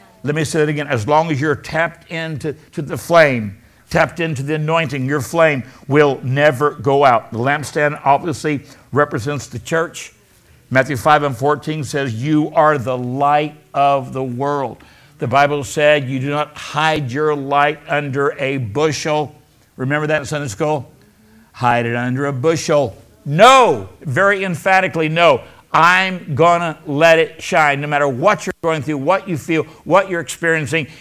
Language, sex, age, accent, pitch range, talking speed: English, male, 60-79, American, 145-180 Hz, 165 wpm